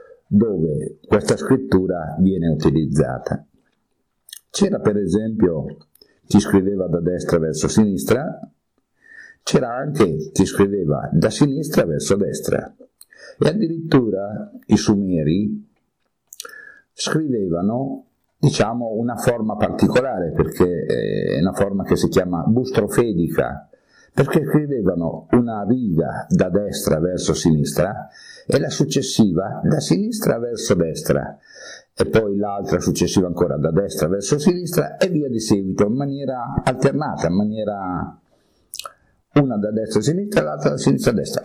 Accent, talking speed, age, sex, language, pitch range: native, 120 wpm, 50-69, male, Italian, 90-140 Hz